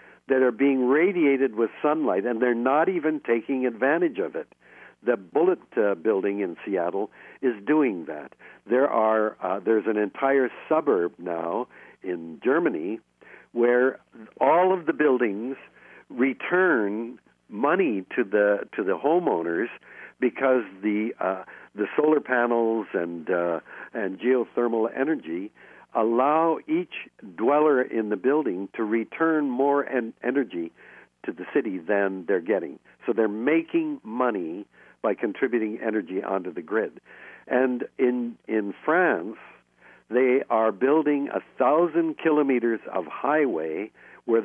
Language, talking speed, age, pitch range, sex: English, 130 wpm, 60-79, 110-150 Hz, male